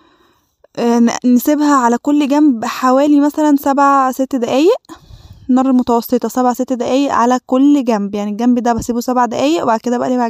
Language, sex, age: Arabic, female, 10-29